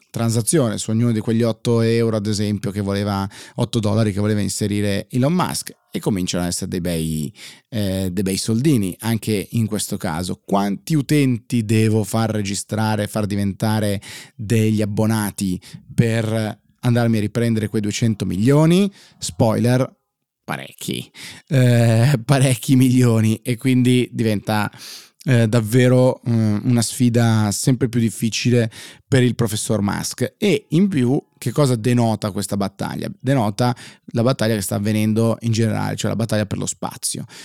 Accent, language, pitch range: native, Italian, 105-125 Hz